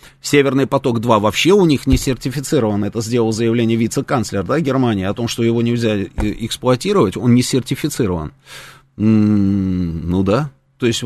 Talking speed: 135 wpm